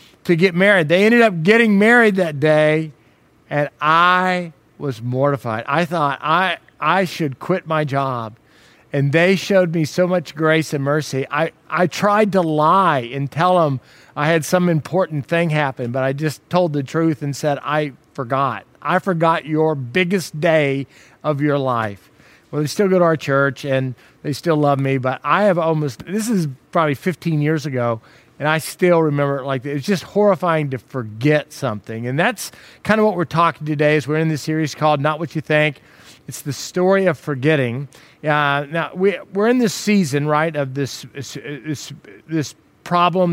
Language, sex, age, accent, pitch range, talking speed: English, male, 50-69, American, 145-185 Hz, 185 wpm